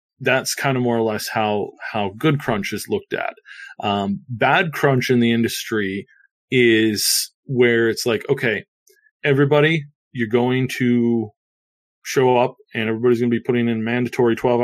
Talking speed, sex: 160 wpm, male